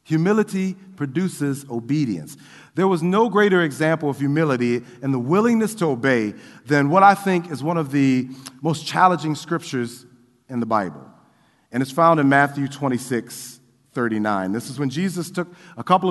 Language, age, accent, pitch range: English, 40-59, American, 125-170 Hz